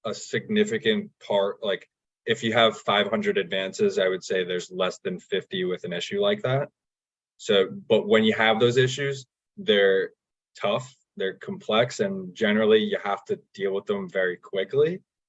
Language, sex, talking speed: English, male, 165 wpm